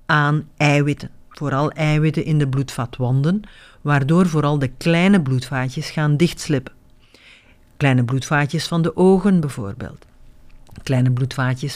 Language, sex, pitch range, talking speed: Dutch, female, 135-160 Hz, 110 wpm